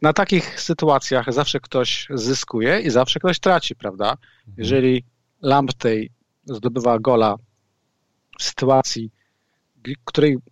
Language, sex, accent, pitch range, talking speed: Polish, male, native, 125-150 Hz, 105 wpm